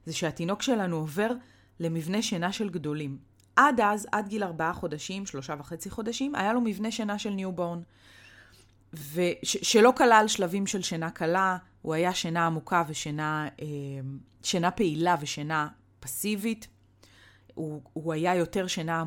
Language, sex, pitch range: Hebrew, female, 150-195 Hz